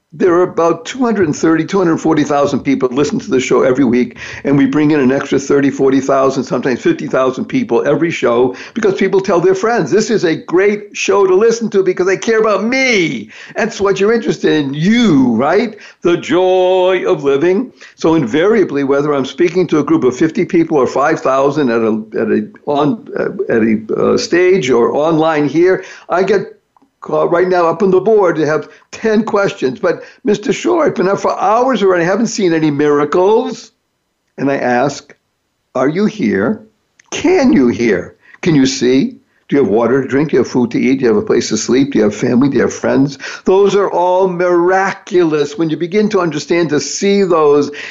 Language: English